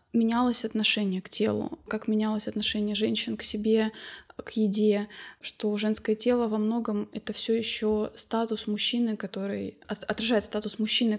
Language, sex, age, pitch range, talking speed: Russian, female, 20-39, 210-240 Hz, 140 wpm